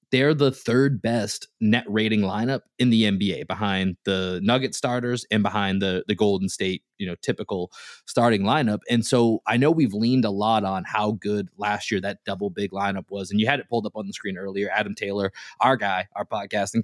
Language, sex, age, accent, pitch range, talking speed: English, male, 20-39, American, 100-120 Hz, 210 wpm